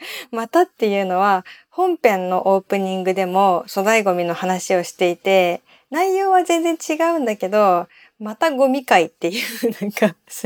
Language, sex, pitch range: Japanese, female, 185-255 Hz